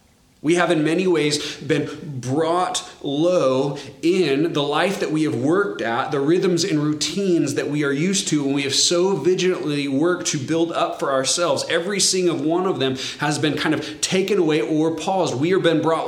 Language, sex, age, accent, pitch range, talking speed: English, male, 30-49, American, 140-175 Hz, 200 wpm